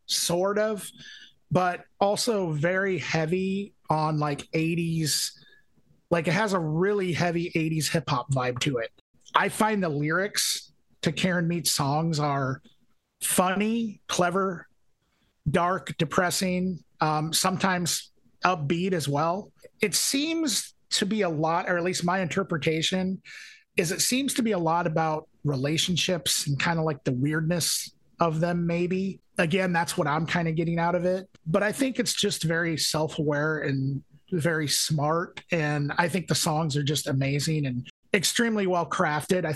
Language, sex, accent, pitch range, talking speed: English, male, American, 150-185 Hz, 150 wpm